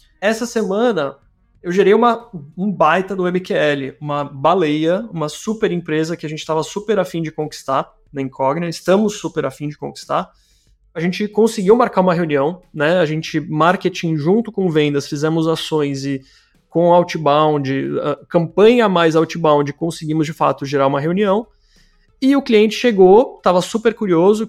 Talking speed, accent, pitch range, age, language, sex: 155 wpm, Brazilian, 155-205 Hz, 20-39, Portuguese, male